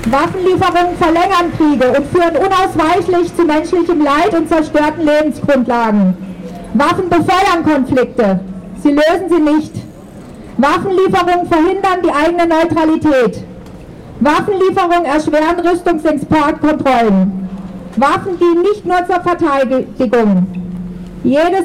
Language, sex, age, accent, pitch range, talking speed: German, female, 40-59, German, 265-345 Hz, 95 wpm